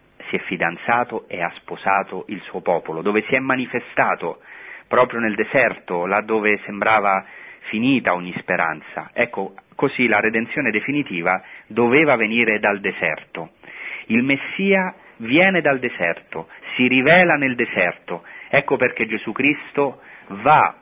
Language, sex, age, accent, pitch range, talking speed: Italian, male, 40-59, native, 105-140 Hz, 130 wpm